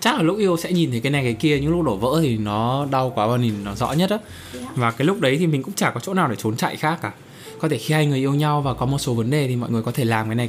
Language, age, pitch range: Vietnamese, 20-39, 115-155 Hz